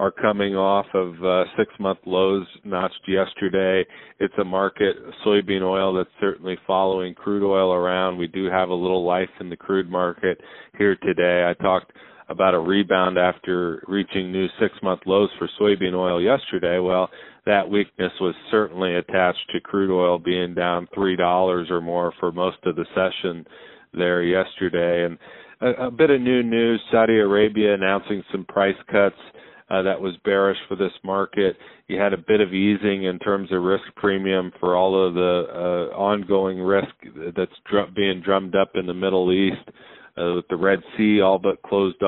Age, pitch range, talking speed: 40-59, 90-100 Hz, 175 wpm